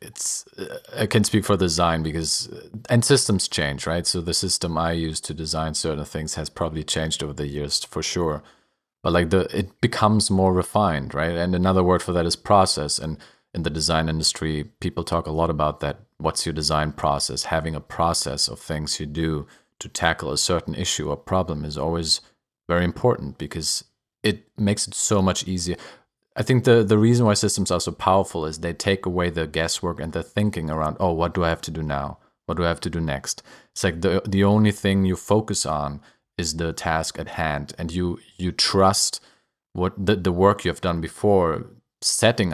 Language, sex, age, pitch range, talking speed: English, male, 30-49, 80-95 Hz, 205 wpm